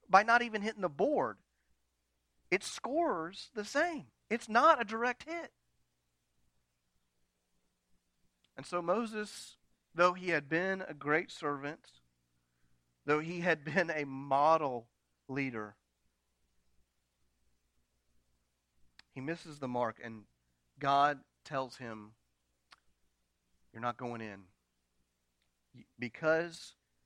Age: 40-59